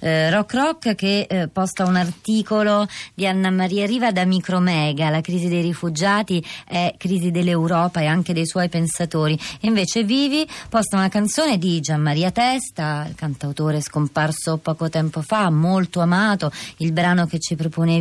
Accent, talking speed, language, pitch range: native, 160 wpm, Italian, 155-185 Hz